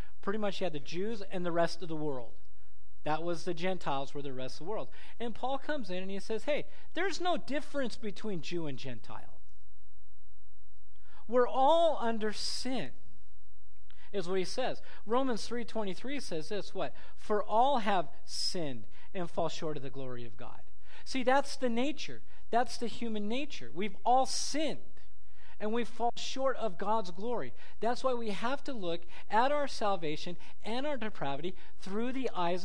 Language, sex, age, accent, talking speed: English, male, 40-59, American, 175 wpm